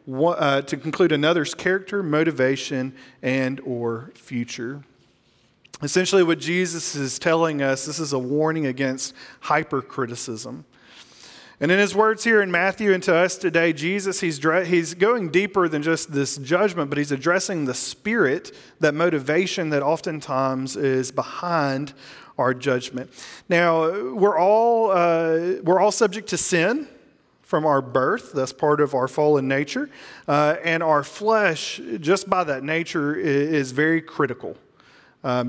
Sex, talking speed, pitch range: male, 145 wpm, 135-180 Hz